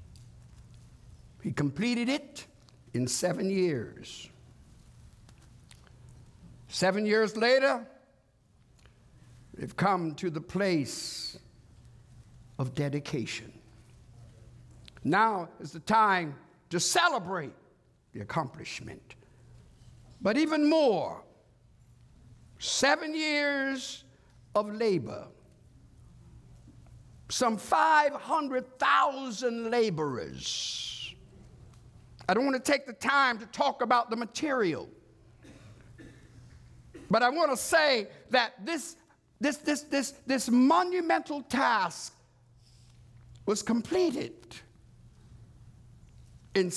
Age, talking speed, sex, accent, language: 60-79, 80 wpm, male, American, English